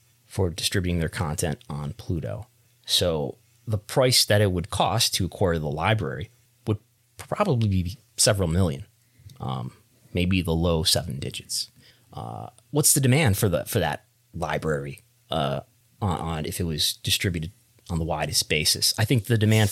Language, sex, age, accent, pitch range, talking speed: English, male, 30-49, American, 90-120 Hz, 160 wpm